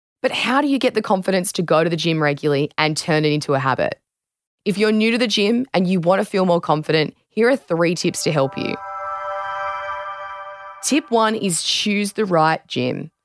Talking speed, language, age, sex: 210 wpm, English, 20-39, female